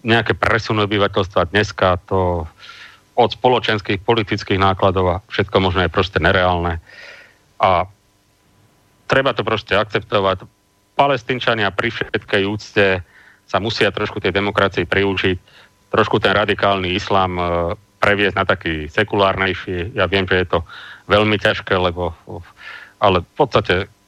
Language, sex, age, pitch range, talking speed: Slovak, male, 40-59, 90-105 Hz, 120 wpm